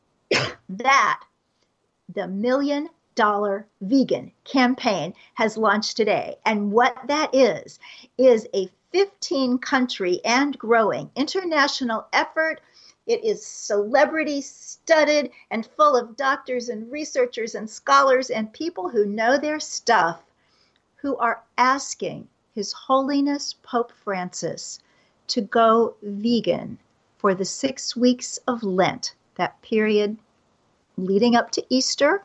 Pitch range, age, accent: 210-275 Hz, 50-69, American